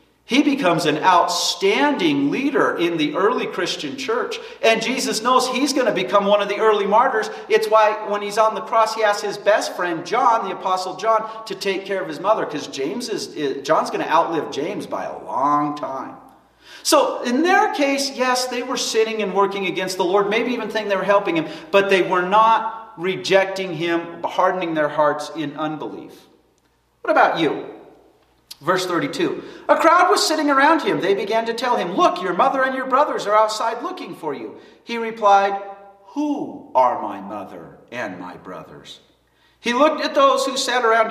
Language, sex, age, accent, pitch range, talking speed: English, male, 40-59, American, 190-275 Hz, 185 wpm